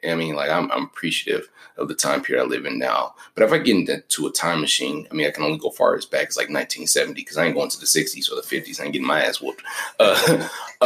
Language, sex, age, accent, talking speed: English, male, 30-49, American, 280 wpm